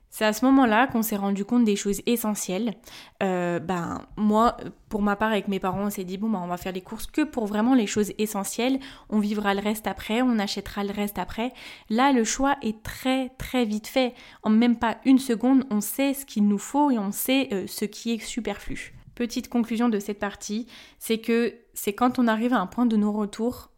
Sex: female